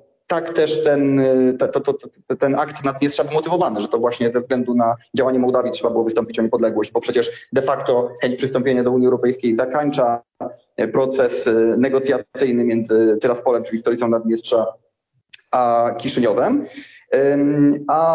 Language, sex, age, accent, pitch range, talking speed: Polish, male, 30-49, native, 125-175 Hz, 150 wpm